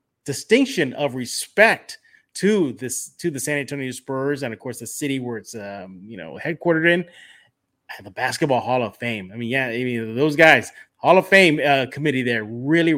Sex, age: male, 30-49